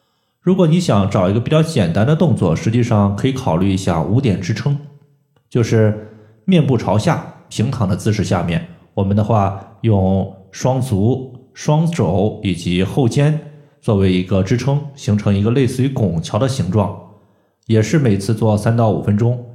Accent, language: native, Chinese